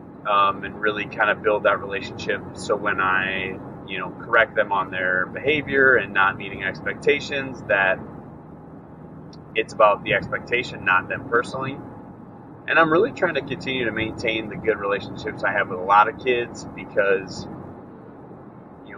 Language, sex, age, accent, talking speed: English, male, 30-49, American, 160 wpm